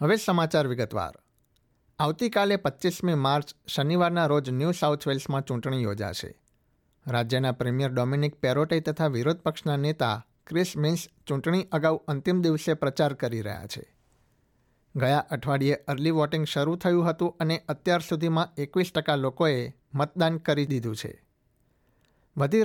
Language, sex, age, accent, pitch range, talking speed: Gujarati, male, 60-79, native, 135-165 Hz, 125 wpm